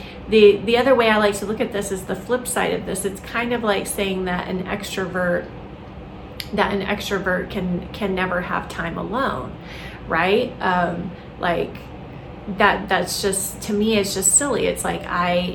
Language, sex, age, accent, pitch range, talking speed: English, female, 30-49, American, 175-200 Hz, 180 wpm